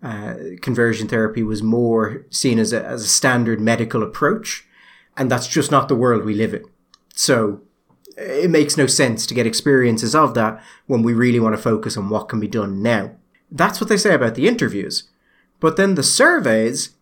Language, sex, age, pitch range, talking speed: English, male, 30-49, 115-175 Hz, 190 wpm